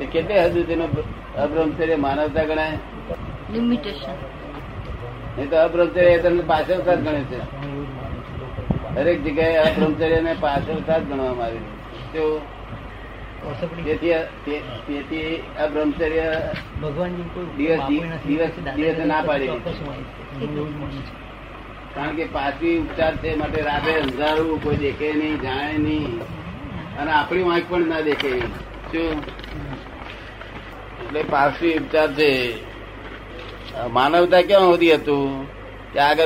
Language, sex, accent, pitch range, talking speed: Gujarati, male, native, 130-160 Hz, 45 wpm